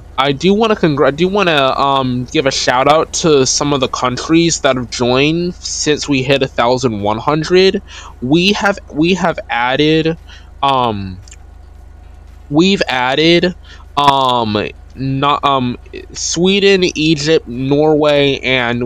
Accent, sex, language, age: American, male, English, 20-39